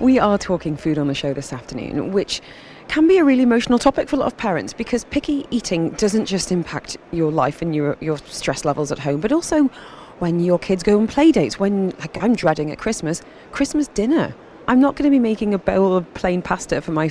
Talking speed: 230 wpm